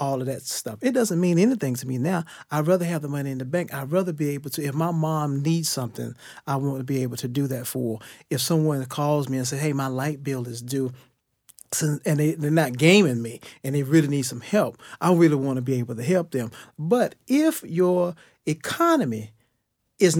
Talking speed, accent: 225 wpm, American